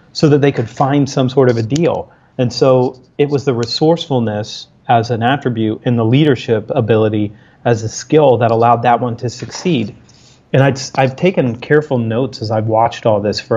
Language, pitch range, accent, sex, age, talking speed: English, 115-140 Hz, American, male, 30-49, 190 wpm